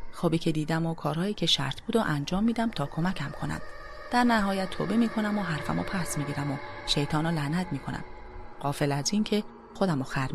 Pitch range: 130-200 Hz